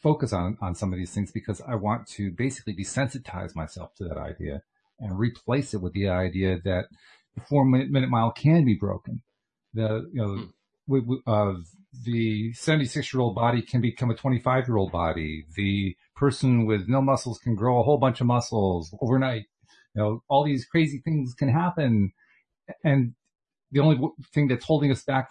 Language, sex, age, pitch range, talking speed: English, male, 40-59, 100-140 Hz, 185 wpm